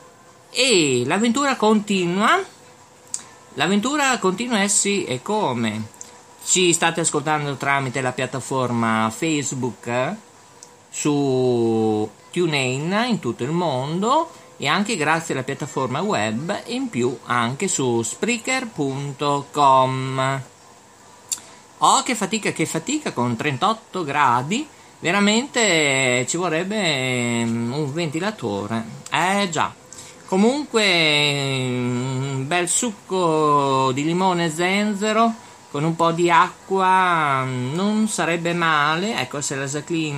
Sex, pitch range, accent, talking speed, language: male, 130-195 Hz, native, 105 wpm, Italian